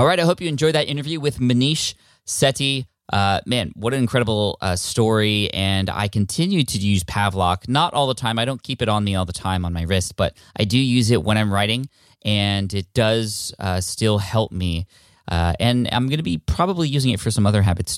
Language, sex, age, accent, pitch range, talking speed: English, male, 20-39, American, 95-120 Hz, 225 wpm